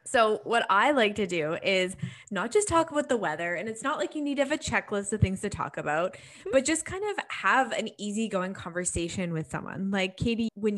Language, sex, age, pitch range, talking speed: English, female, 20-39, 180-235 Hz, 230 wpm